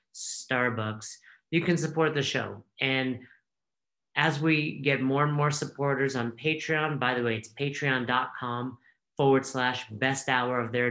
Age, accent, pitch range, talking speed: 40-59, American, 120-150 Hz, 150 wpm